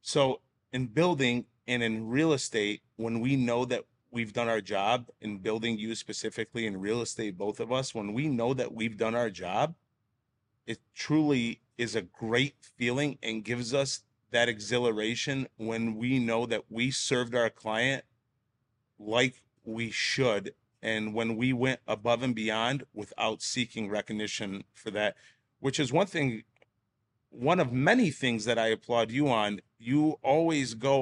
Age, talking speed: 30-49, 160 wpm